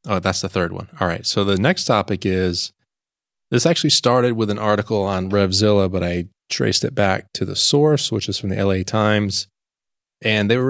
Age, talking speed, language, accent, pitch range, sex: 30-49, 210 wpm, English, American, 95-120 Hz, male